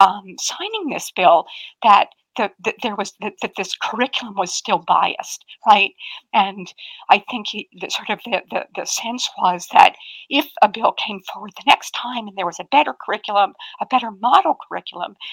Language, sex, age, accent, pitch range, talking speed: English, female, 50-69, American, 215-295 Hz, 185 wpm